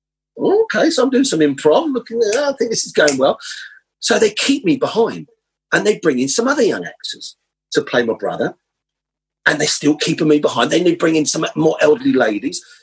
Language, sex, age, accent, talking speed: English, male, 40-59, British, 210 wpm